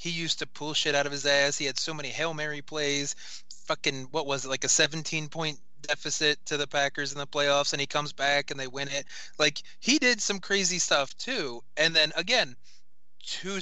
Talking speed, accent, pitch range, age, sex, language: 215 wpm, American, 135-175 Hz, 20-39, male, English